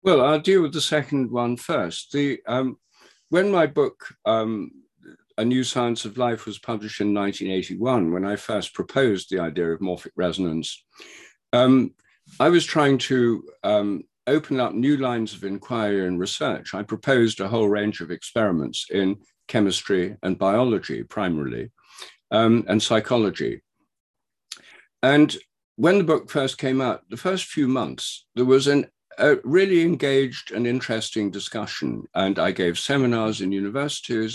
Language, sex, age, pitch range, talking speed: Hebrew, male, 50-69, 105-140 Hz, 155 wpm